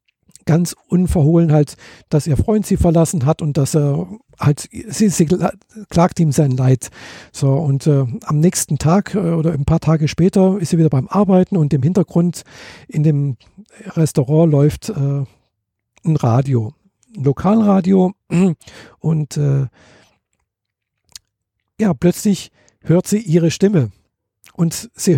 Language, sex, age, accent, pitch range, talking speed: German, male, 50-69, German, 145-190 Hz, 140 wpm